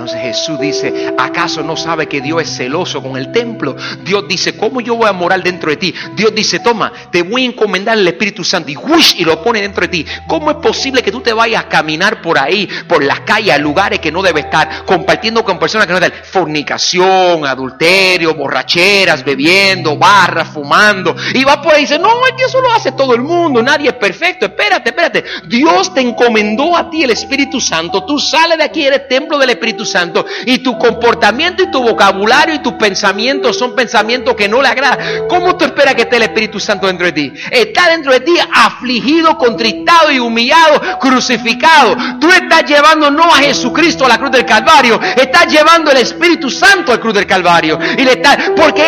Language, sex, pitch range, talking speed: Spanish, male, 195-290 Hz, 210 wpm